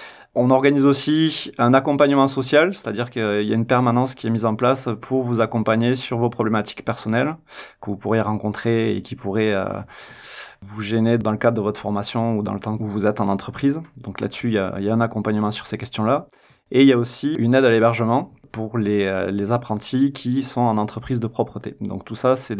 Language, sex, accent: French, male, French